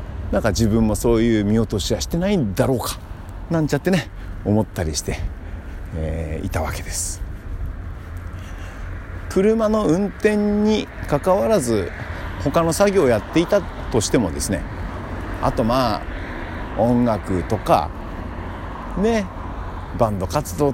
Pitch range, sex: 90-120 Hz, male